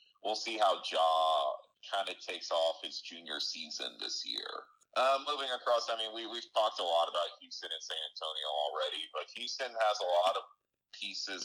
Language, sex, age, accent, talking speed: English, male, 30-49, American, 185 wpm